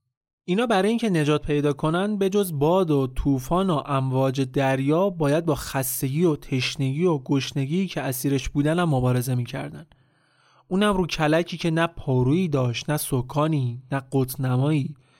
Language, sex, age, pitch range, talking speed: Persian, male, 30-49, 135-175 Hz, 145 wpm